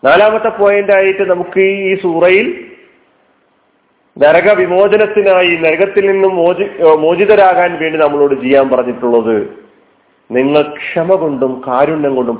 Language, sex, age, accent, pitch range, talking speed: Malayalam, male, 40-59, native, 135-195 Hz, 95 wpm